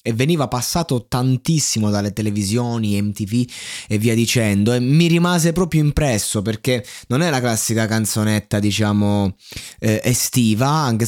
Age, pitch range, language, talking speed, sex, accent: 20-39, 110-145 Hz, Italian, 135 wpm, male, native